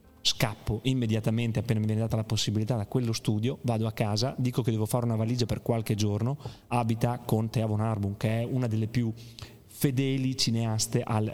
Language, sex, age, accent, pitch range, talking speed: Italian, male, 30-49, native, 105-130 Hz, 190 wpm